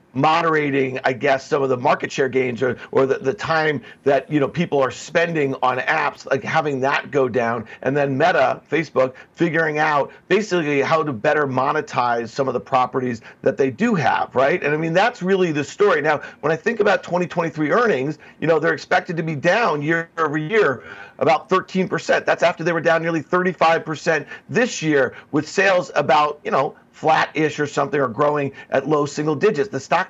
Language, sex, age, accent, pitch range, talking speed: English, male, 50-69, American, 140-180 Hz, 195 wpm